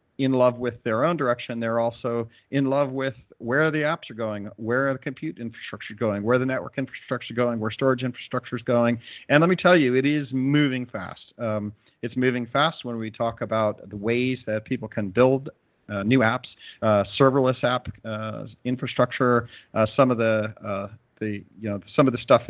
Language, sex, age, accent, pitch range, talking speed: English, male, 40-59, American, 110-125 Hz, 205 wpm